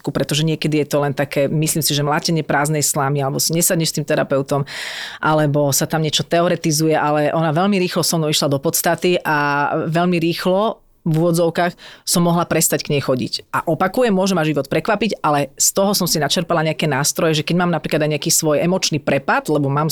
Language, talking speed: Slovak, 205 wpm